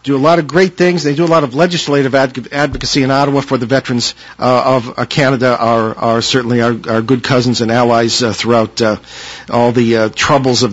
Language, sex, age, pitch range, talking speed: English, male, 50-69, 130-175 Hz, 215 wpm